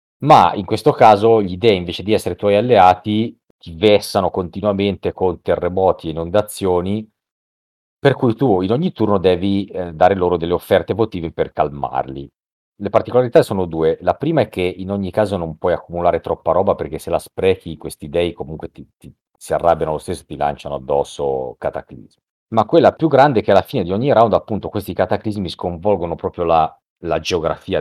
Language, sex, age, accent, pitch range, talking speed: Italian, male, 40-59, native, 80-105 Hz, 185 wpm